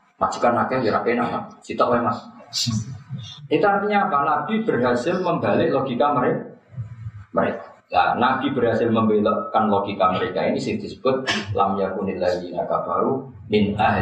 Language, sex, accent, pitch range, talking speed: Indonesian, male, native, 105-140 Hz, 105 wpm